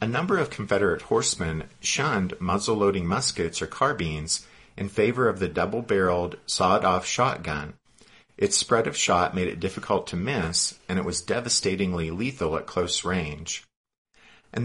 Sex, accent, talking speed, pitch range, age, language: male, American, 145 wpm, 80-100 Hz, 50-69, English